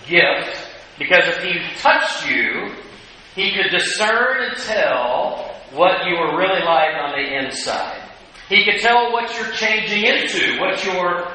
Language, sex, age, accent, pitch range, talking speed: English, male, 50-69, American, 150-195 Hz, 150 wpm